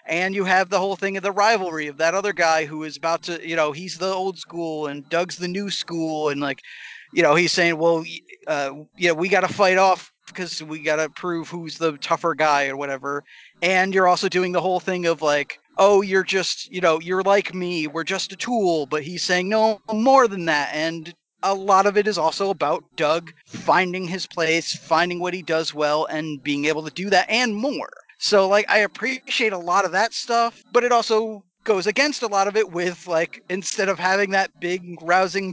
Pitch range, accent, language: 165-215 Hz, American, English